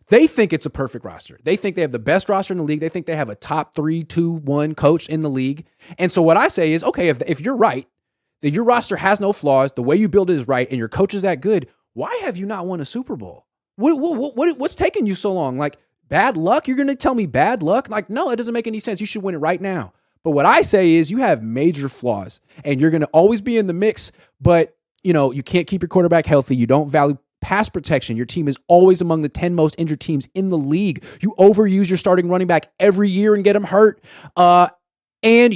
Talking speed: 265 wpm